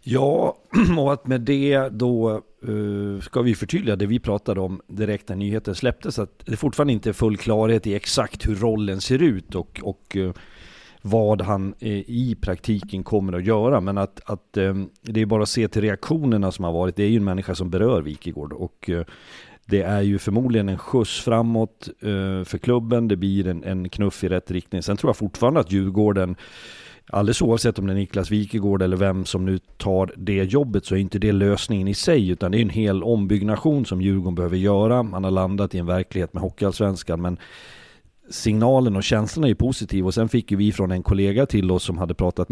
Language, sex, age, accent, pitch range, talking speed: Swedish, male, 40-59, native, 95-110 Hz, 210 wpm